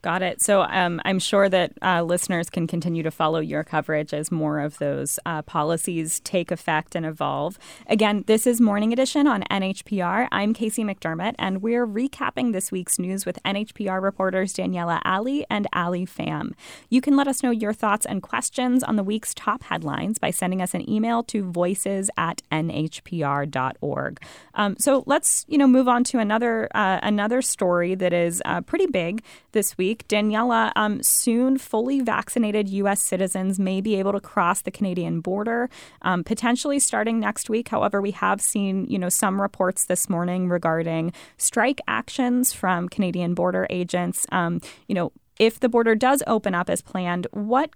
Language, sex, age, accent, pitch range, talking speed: English, female, 20-39, American, 180-230 Hz, 175 wpm